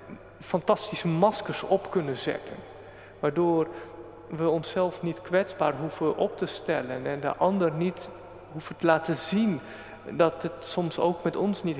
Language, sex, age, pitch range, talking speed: Dutch, male, 50-69, 135-195 Hz, 145 wpm